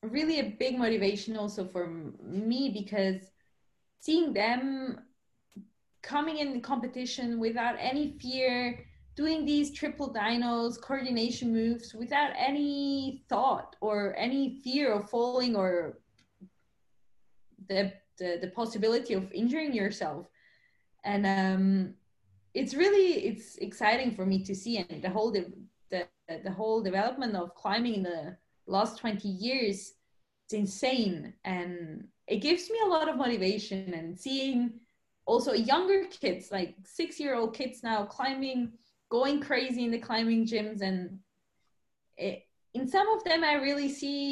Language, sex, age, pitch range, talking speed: English, female, 20-39, 195-265 Hz, 130 wpm